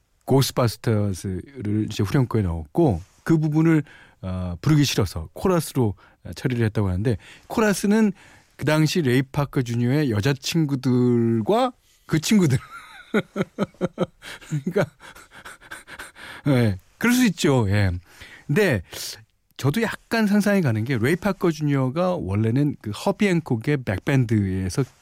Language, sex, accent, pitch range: Korean, male, native, 100-160 Hz